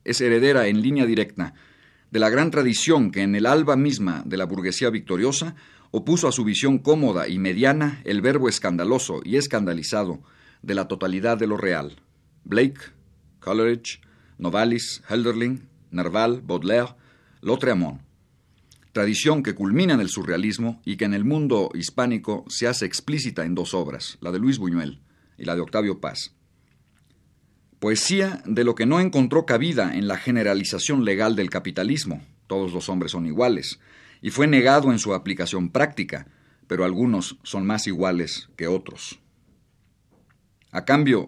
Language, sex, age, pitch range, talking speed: Spanish, male, 50-69, 95-130 Hz, 150 wpm